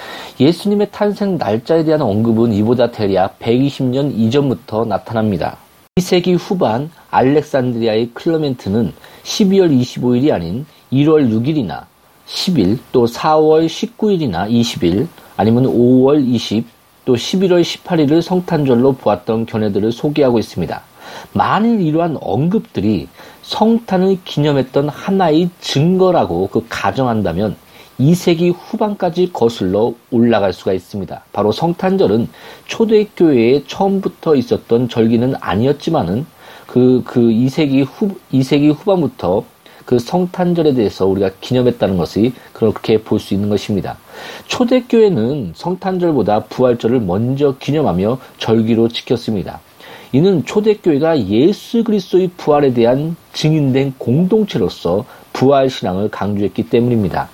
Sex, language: male, Korean